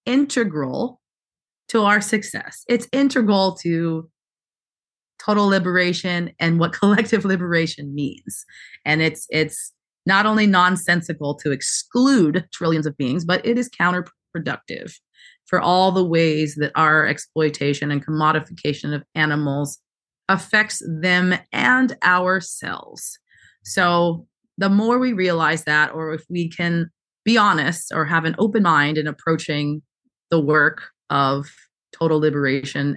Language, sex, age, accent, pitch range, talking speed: English, female, 30-49, American, 150-190 Hz, 125 wpm